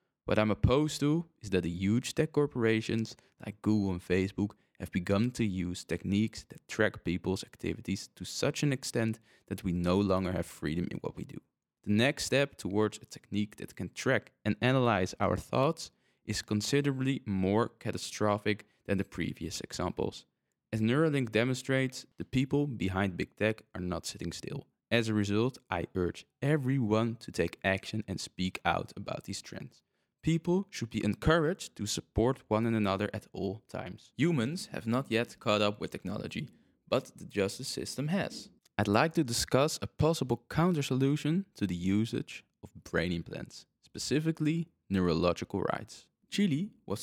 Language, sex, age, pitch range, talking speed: English, male, 20-39, 100-140 Hz, 160 wpm